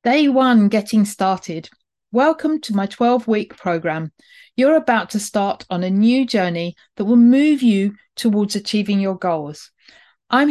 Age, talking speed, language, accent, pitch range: 40-59, 150 wpm, English, British, 195-245 Hz